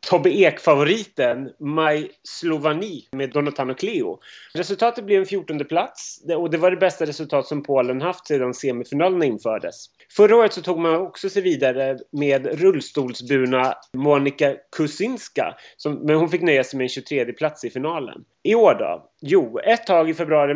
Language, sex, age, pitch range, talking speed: Swedish, male, 30-49, 130-180 Hz, 150 wpm